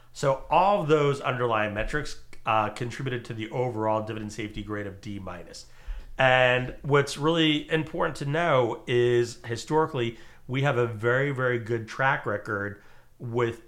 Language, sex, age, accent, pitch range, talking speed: English, male, 40-59, American, 110-135 Hz, 150 wpm